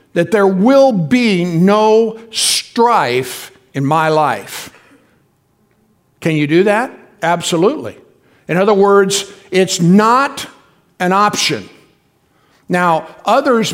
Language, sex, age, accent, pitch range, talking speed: English, male, 60-79, American, 160-200 Hz, 100 wpm